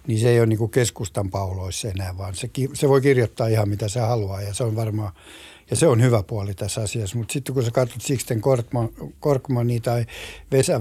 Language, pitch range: Finnish, 105-135 Hz